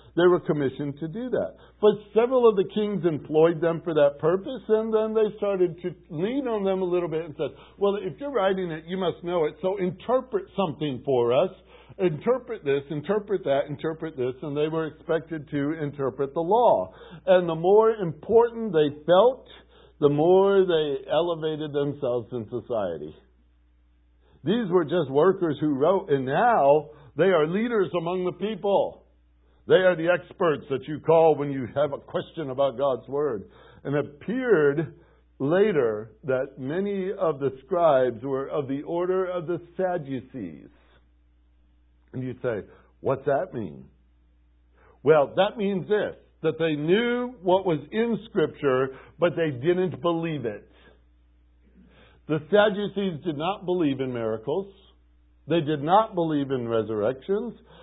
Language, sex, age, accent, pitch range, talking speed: English, male, 60-79, American, 135-190 Hz, 155 wpm